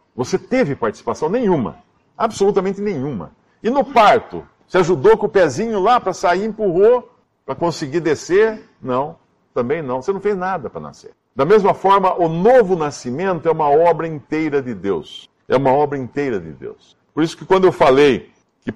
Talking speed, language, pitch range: 175 wpm, Portuguese, 130-200 Hz